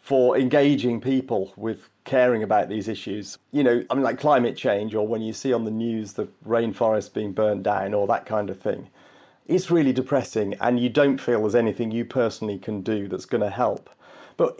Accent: British